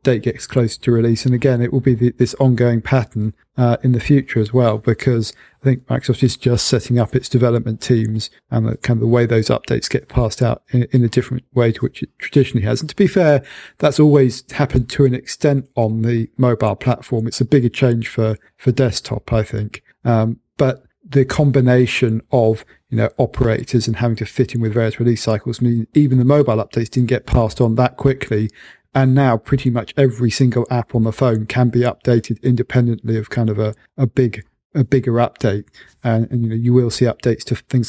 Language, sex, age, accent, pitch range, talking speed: English, male, 40-59, British, 115-130 Hz, 215 wpm